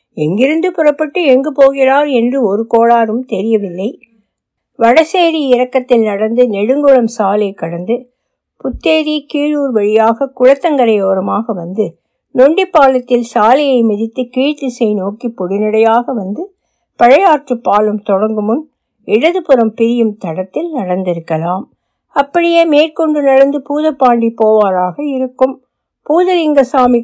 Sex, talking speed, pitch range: female, 95 wpm, 210-275 Hz